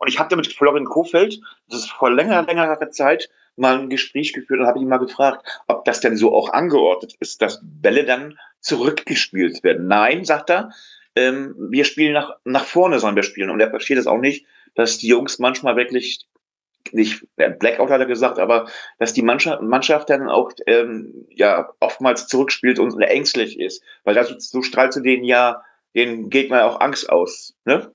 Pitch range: 120-155 Hz